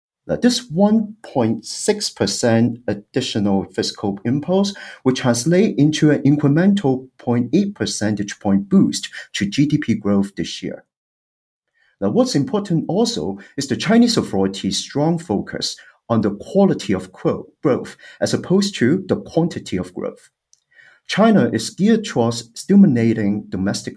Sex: male